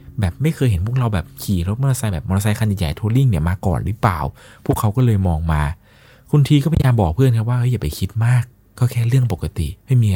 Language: Thai